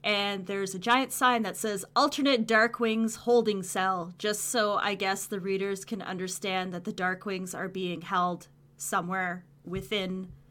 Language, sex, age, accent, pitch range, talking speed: English, female, 20-39, American, 175-220 Hz, 165 wpm